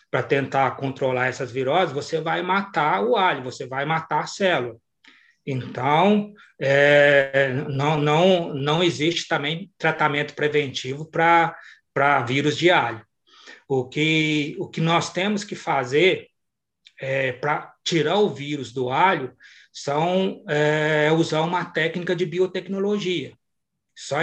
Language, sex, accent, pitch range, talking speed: Portuguese, male, Brazilian, 140-180 Hz, 125 wpm